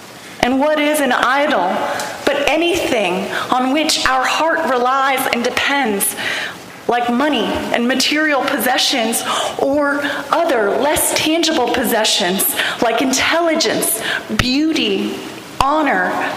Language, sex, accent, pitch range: English, female, American, 245-300 Hz